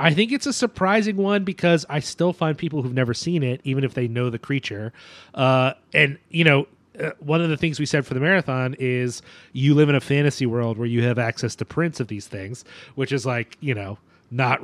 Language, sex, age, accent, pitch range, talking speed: English, male, 30-49, American, 125-155 Hz, 230 wpm